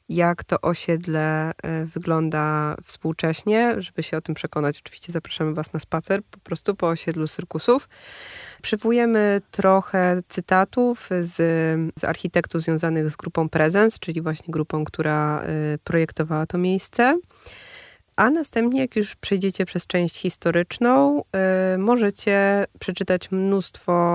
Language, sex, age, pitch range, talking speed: Polish, female, 20-39, 165-200 Hz, 120 wpm